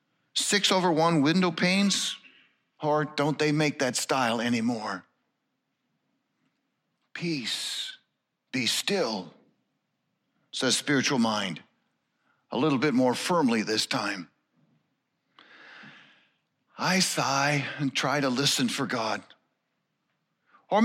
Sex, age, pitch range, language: male, 50-69, 160-255 Hz, English